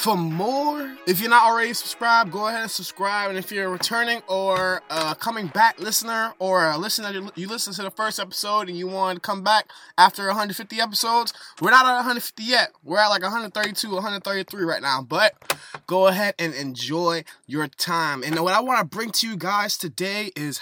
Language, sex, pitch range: English, male, 175-215 Hz